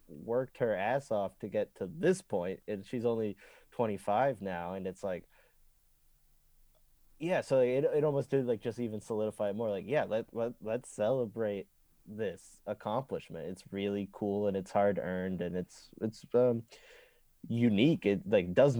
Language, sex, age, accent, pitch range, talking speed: English, male, 20-39, American, 100-125 Hz, 165 wpm